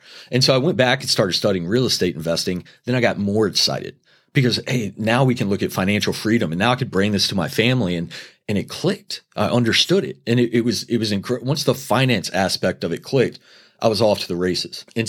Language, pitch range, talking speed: English, 95-125 Hz, 245 wpm